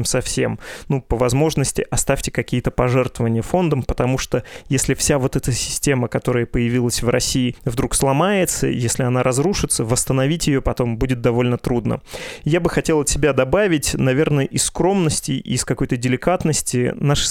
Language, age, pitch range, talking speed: Russian, 20-39, 125-145 Hz, 155 wpm